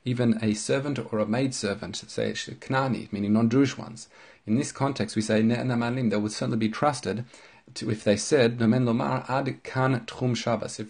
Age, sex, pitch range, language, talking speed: 40-59, male, 110-125 Hz, English, 165 wpm